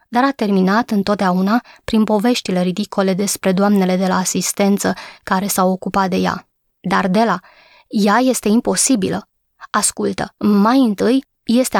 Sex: female